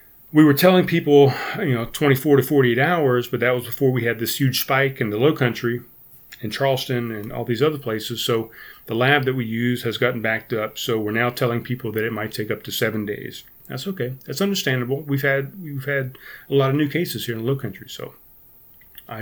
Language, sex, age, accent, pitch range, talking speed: English, male, 40-59, American, 110-135 Hz, 230 wpm